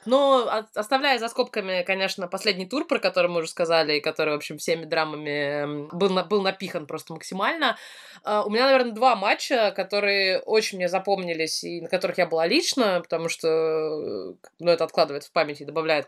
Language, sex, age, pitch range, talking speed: Russian, female, 20-39, 165-210 Hz, 175 wpm